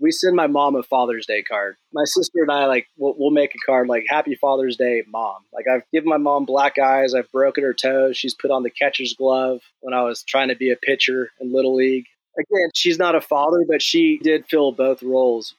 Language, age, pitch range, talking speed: English, 30-49, 125-150 Hz, 240 wpm